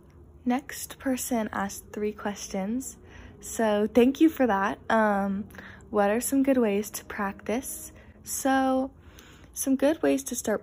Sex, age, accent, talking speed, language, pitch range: female, 10-29, American, 135 wpm, English, 195-240 Hz